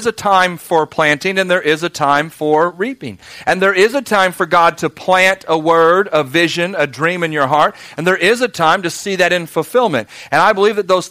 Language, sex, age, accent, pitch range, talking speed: English, male, 40-59, American, 160-195 Hz, 250 wpm